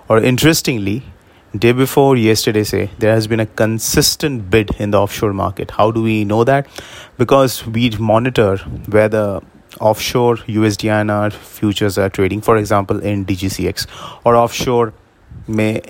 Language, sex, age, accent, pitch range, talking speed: English, male, 30-49, Indian, 100-120 Hz, 160 wpm